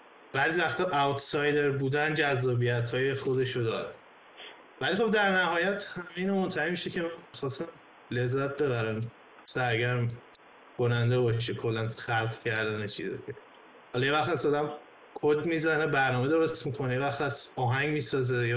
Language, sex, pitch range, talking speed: Persian, male, 120-155 Hz, 135 wpm